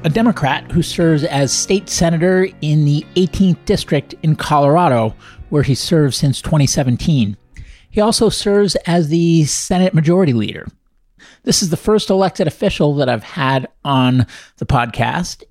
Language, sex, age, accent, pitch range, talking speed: English, male, 50-69, American, 135-175 Hz, 145 wpm